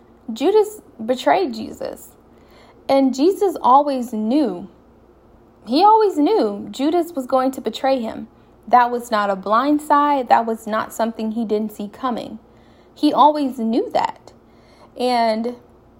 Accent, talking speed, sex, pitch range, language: American, 130 wpm, female, 225-285 Hz, English